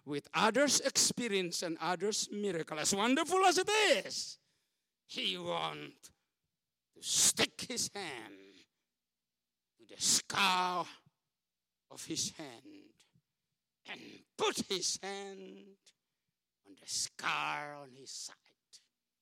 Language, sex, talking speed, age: English, male, 105 wpm, 60-79